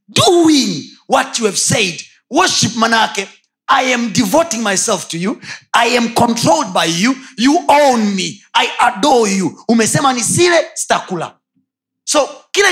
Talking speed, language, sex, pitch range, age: 140 wpm, Swahili, male, 165-250 Hz, 30-49